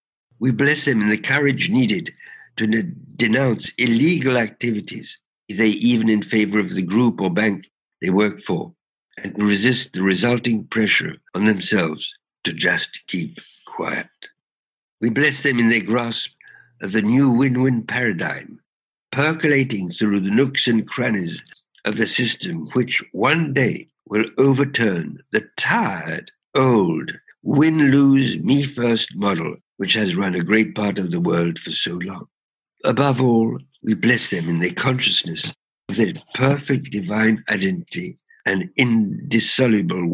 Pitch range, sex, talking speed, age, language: 105-135 Hz, male, 140 wpm, 60-79, English